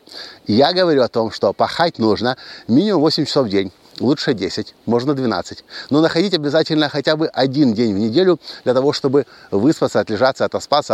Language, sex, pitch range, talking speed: Russian, male, 125-160 Hz, 170 wpm